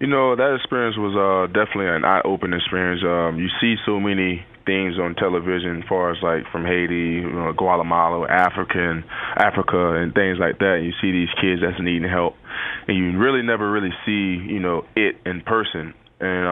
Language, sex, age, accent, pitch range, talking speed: English, male, 20-39, American, 85-100 Hz, 180 wpm